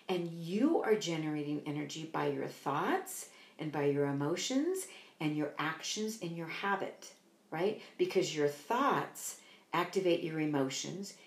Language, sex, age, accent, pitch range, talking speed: English, female, 50-69, American, 155-200 Hz, 135 wpm